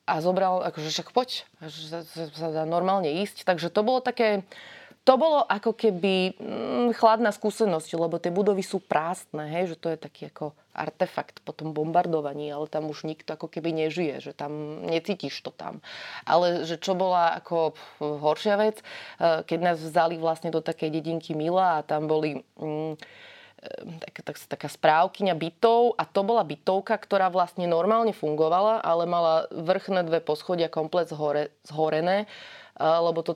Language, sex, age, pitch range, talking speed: Slovak, female, 20-39, 155-195 Hz, 155 wpm